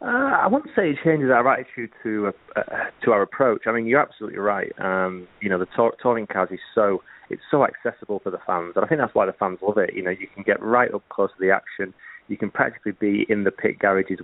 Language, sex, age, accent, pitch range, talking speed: English, male, 30-49, British, 95-110 Hz, 255 wpm